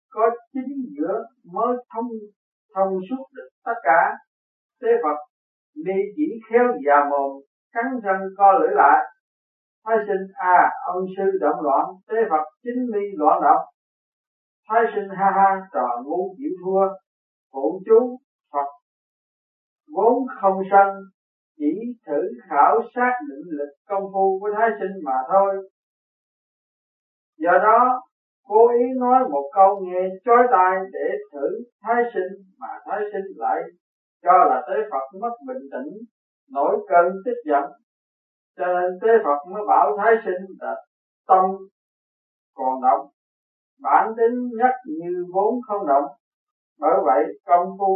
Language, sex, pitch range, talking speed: Vietnamese, male, 180-240 Hz, 145 wpm